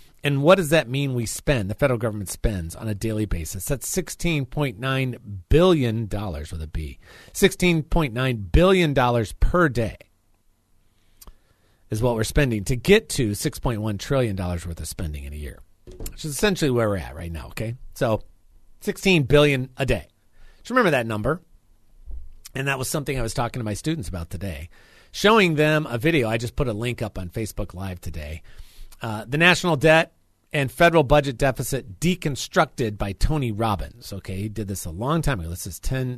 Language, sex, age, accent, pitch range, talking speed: English, male, 40-59, American, 100-150 Hz, 175 wpm